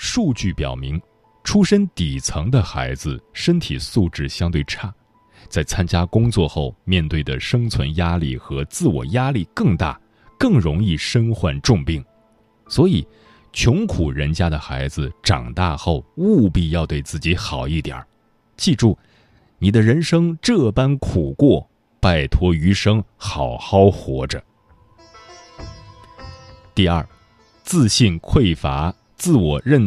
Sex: male